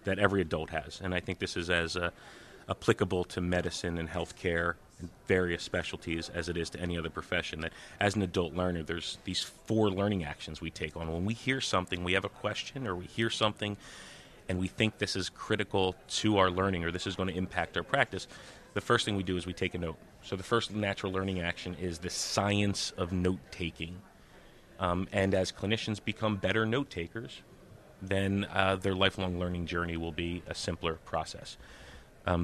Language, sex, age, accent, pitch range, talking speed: English, male, 30-49, American, 90-110 Hz, 195 wpm